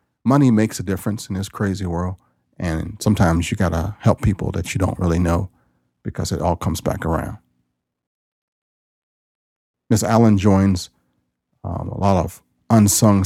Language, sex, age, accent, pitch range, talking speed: English, male, 40-59, American, 80-100 Hz, 155 wpm